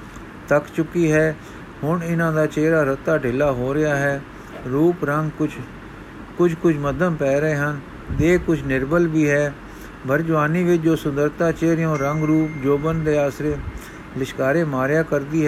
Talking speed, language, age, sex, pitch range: 150 wpm, Punjabi, 50-69, male, 135-160 Hz